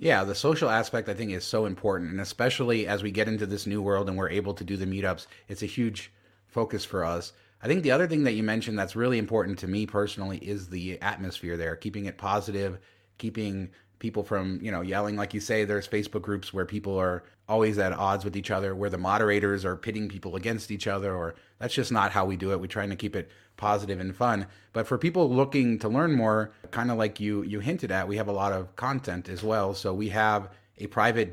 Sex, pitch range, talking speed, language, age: male, 95-110 Hz, 240 wpm, English, 30-49